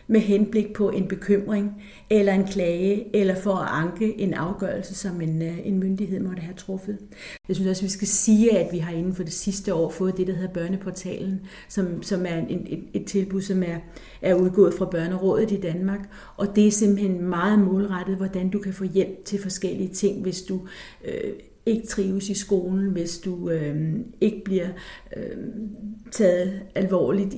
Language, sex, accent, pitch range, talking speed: Danish, female, native, 185-205 Hz, 180 wpm